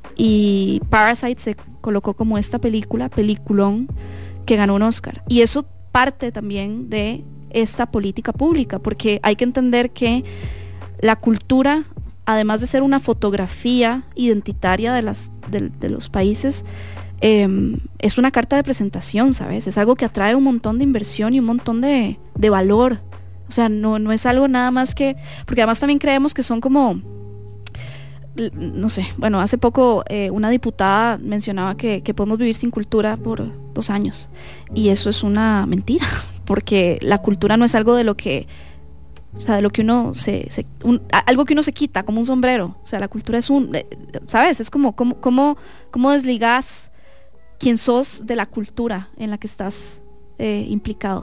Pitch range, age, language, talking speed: 200-245 Hz, 20-39, English, 175 wpm